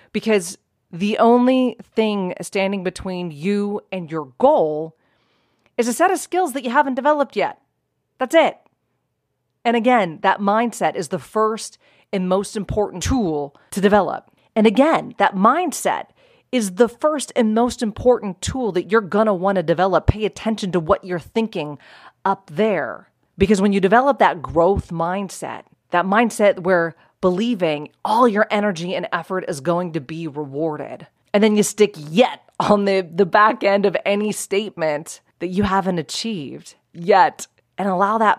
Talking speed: 160 wpm